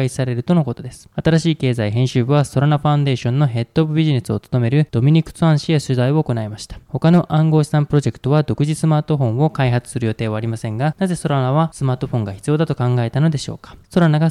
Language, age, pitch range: Japanese, 20-39, 120-155 Hz